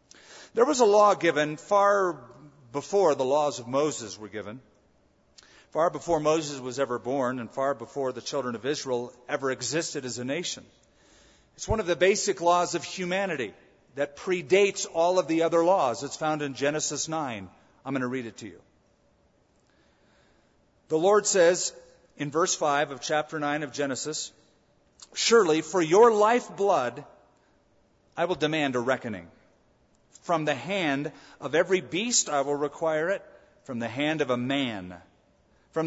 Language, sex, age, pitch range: English, male, 40-59, 135-175 Hz